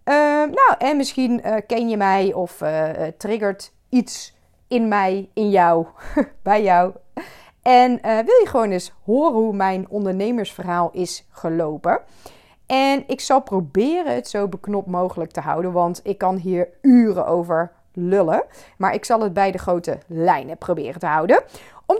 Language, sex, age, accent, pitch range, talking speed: Dutch, female, 30-49, Dutch, 185-270 Hz, 165 wpm